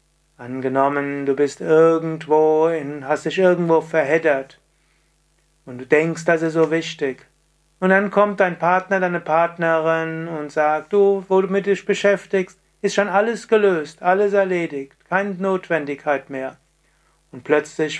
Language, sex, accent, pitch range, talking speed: German, male, German, 145-170 Hz, 140 wpm